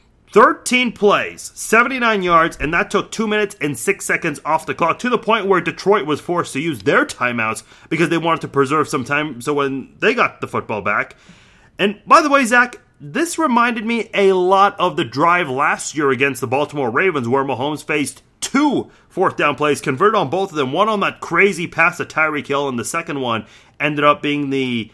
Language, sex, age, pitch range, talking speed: English, male, 30-49, 130-185 Hz, 210 wpm